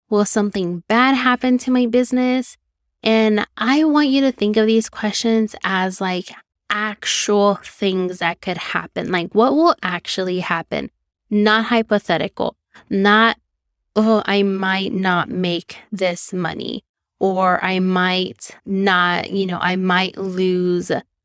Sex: female